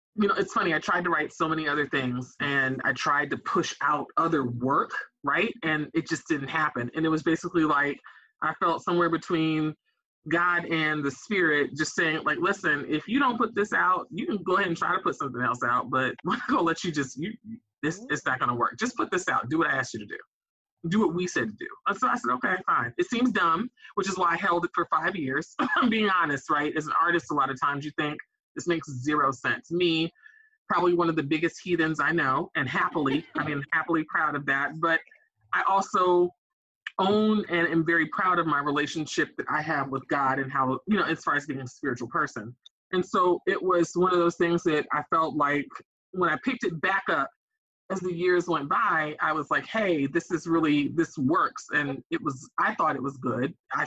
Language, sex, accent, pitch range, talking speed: English, male, American, 150-190 Hz, 235 wpm